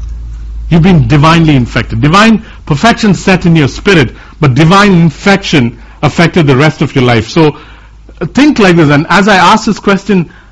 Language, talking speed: English, 165 wpm